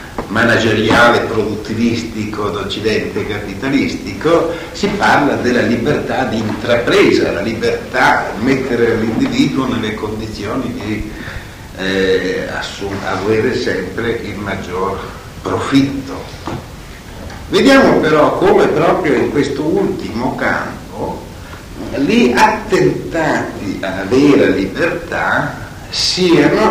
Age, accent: 60-79, native